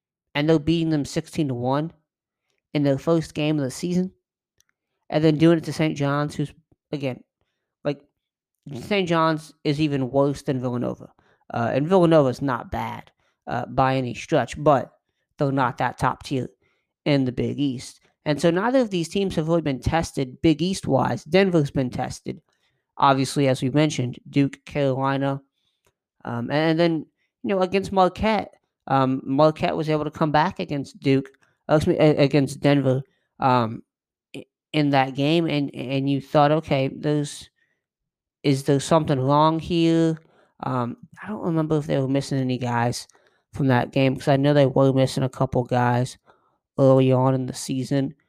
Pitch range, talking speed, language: 130-160 Hz, 165 wpm, English